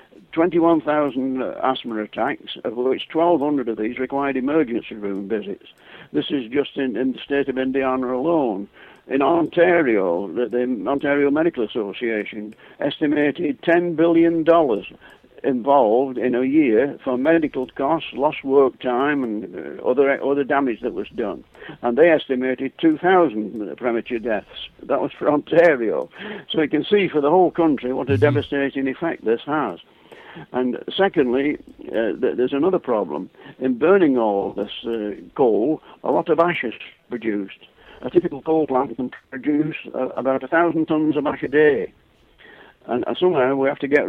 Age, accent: 60-79, British